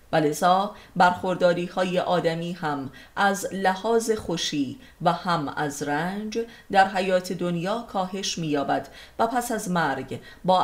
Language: Persian